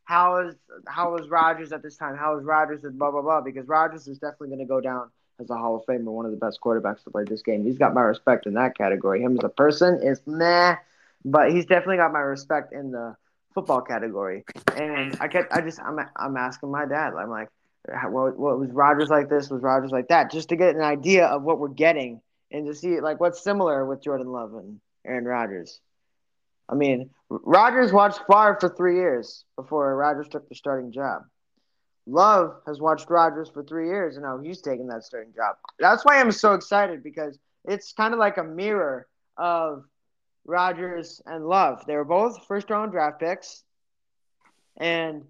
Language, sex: English, male